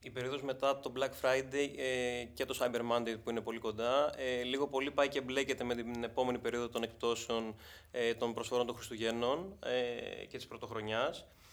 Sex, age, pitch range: male, 20-39, 120-135 Hz